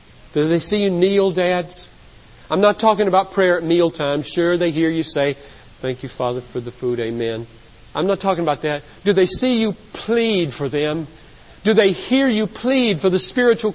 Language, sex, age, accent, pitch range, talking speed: English, male, 40-59, American, 125-185 Hz, 195 wpm